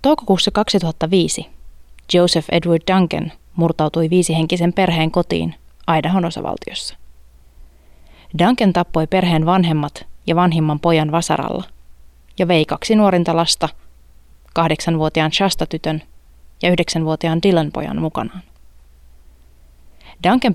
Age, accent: 30-49, native